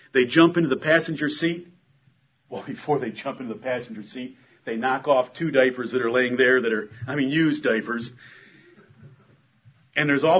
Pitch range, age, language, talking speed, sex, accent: 130-155 Hz, 50-69, English, 185 wpm, male, American